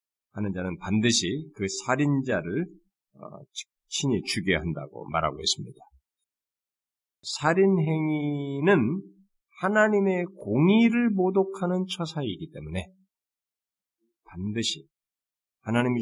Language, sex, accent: Korean, male, native